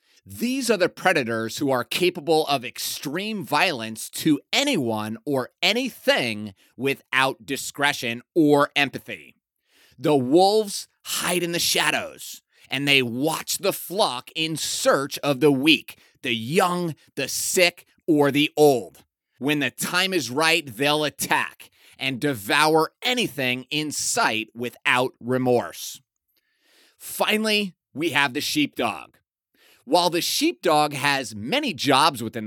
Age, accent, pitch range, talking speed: 30-49, American, 130-180 Hz, 125 wpm